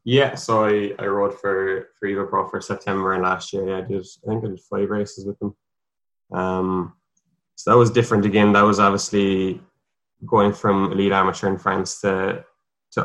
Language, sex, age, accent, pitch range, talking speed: English, male, 20-39, Irish, 95-100 Hz, 195 wpm